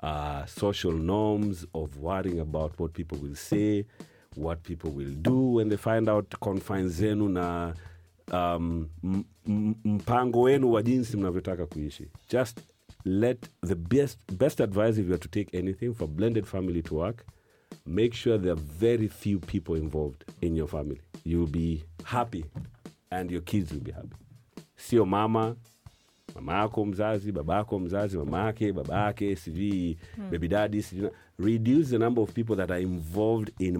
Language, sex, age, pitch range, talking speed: English, male, 40-59, 85-110 Hz, 150 wpm